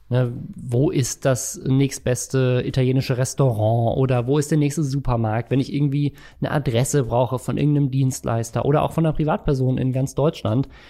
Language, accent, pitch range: German, German, 120-150 Hz